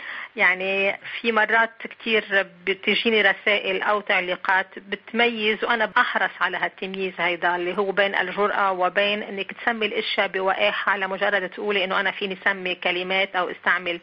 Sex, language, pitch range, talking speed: female, Arabic, 185-215 Hz, 140 wpm